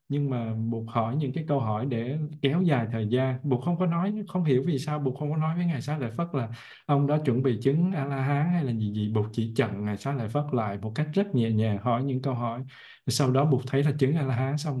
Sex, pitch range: male, 115-145 Hz